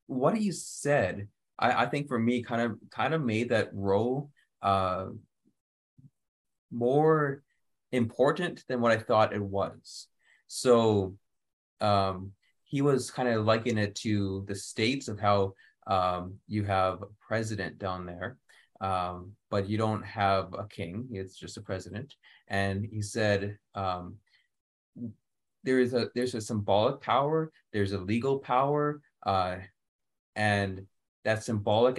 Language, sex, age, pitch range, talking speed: English, male, 20-39, 95-115 Hz, 140 wpm